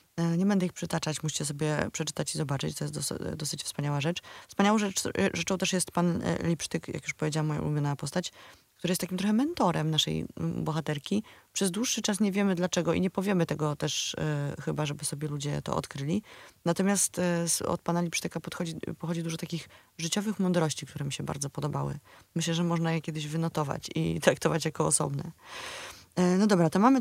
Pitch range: 160-190 Hz